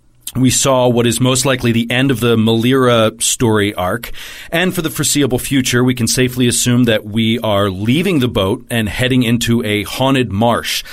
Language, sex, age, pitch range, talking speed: English, male, 40-59, 105-130 Hz, 185 wpm